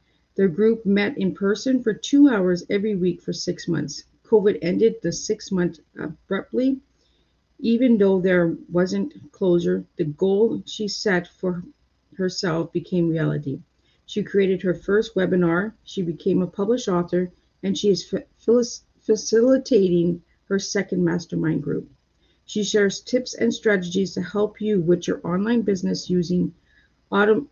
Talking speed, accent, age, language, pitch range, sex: 140 wpm, American, 40-59, English, 170-205 Hz, female